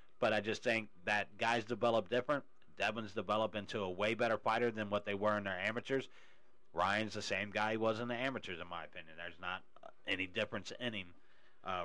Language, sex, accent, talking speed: English, male, American, 215 wpm